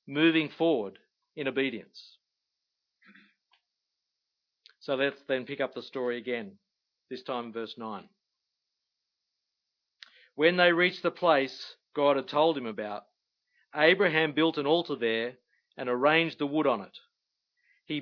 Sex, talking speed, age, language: male, 125 wpm, 40-59, English